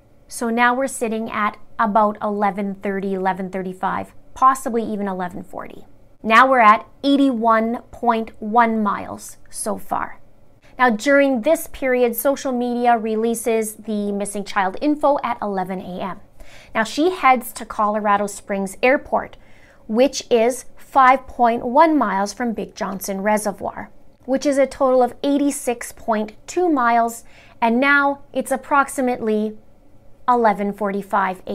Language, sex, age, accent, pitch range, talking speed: English, female, 30-49, American, 215-265 Hz, 115 wpm